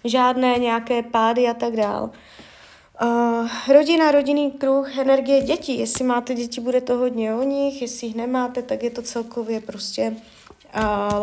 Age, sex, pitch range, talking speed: 20-39, female, 220-265 Hz, 150 wpm